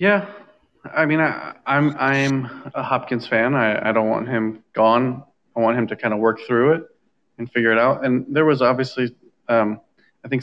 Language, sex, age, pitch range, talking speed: English, male, 20-39, 115-135 Hz, 200 wpm